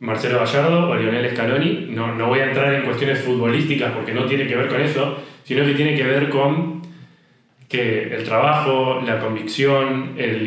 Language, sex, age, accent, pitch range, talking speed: Spanish, male, 20-39, Argentinian, 115-145 Hz, 185 wpm